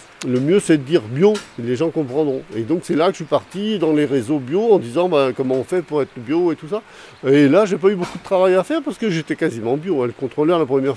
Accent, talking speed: French, 290 wpm